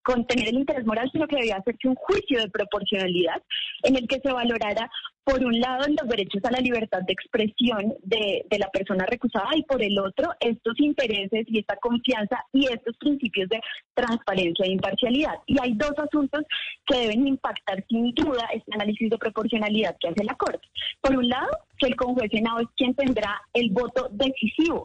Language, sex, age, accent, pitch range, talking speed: Spanish, female, 20-39, Colombian, 215-275 Hz, 190 wpm